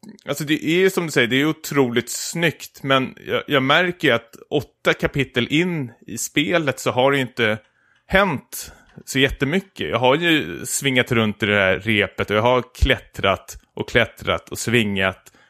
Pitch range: 110-140 Hz